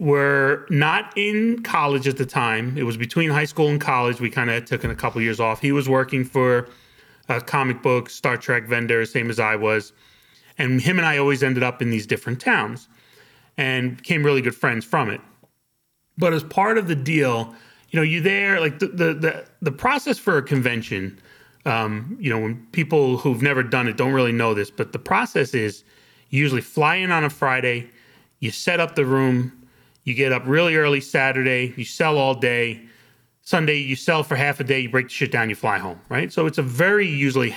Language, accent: English, American